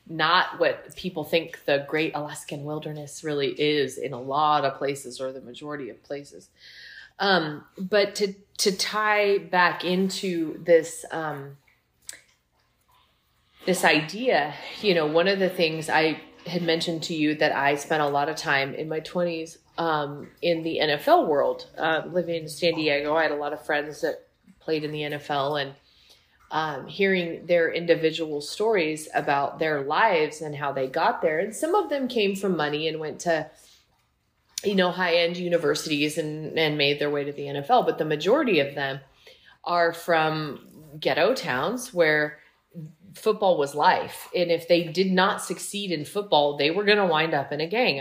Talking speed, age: 175 wpm, 30-49